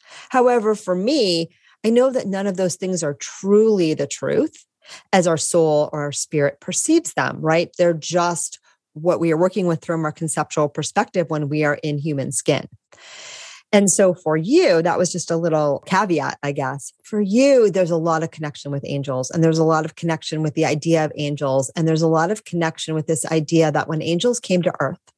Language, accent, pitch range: English, American, 155-185 Hz